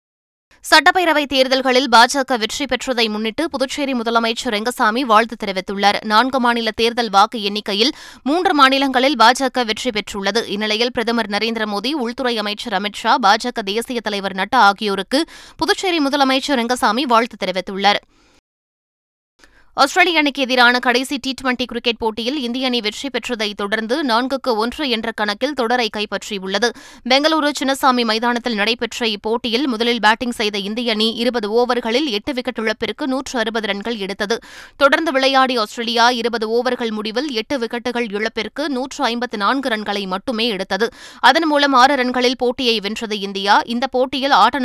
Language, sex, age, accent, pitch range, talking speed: Tamil, female, 20-39, native, 220-265 Hz, 130 wpm